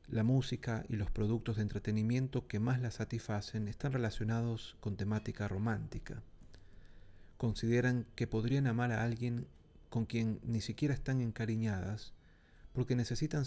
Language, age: Spanish, 40-59